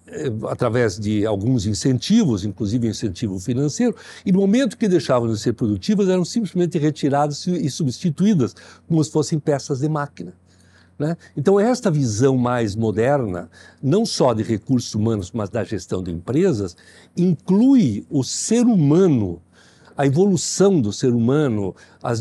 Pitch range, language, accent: 115-185 Hz, Portuguese, Brazilian